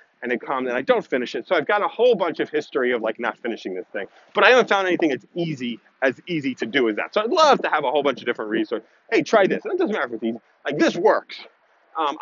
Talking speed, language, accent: 290 wpm, English, American